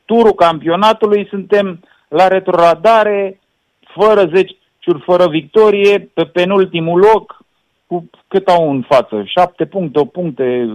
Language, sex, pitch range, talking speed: Romanian, male, 170-205 Hz, 125 wpm